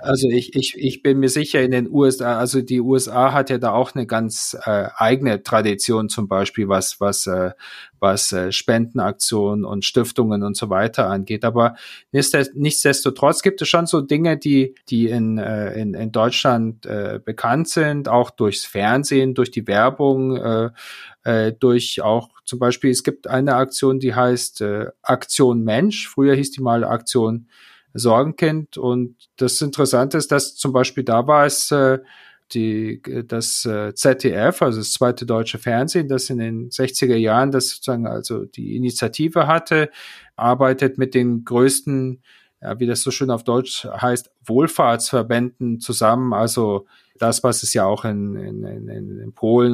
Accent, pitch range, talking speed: German, 115-135 Hz, 160 wpm